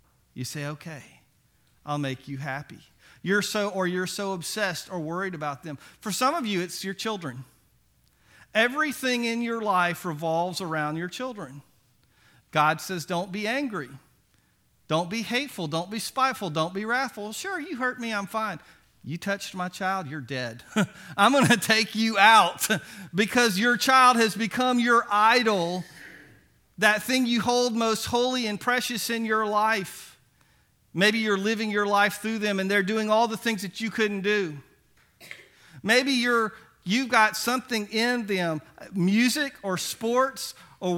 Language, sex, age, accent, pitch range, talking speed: English, male, 40-59, American, 175-235 Hz, 160 wpm